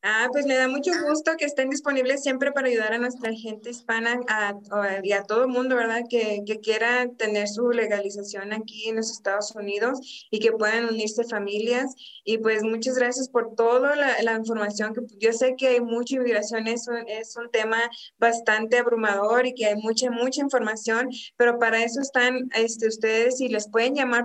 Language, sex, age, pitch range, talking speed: English, female, 20-39, 215-255 Hz, 195 wpm